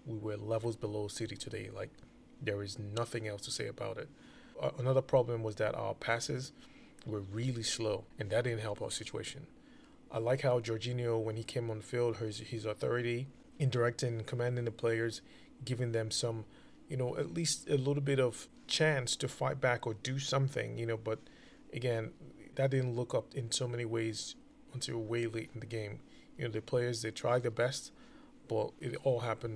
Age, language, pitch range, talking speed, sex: 20-39, English, 110-125 Hz, 195 wpm, male